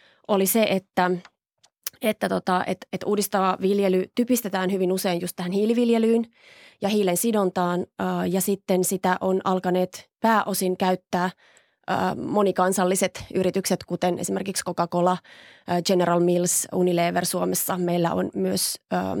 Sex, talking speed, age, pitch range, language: female, 105 wpm, 20-39, 180-200 Hz, Finnish